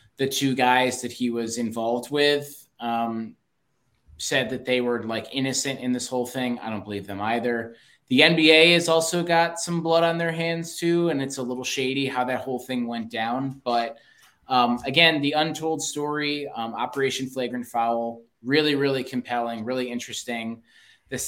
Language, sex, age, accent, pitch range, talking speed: English, male, 20-39, American, 115-140 Hz, 175 wpm